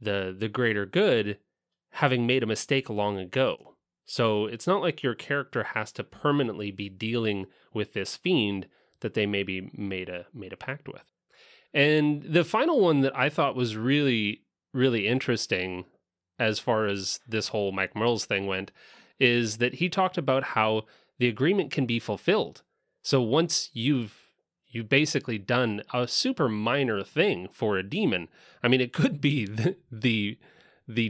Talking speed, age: 160 wpm, 30-49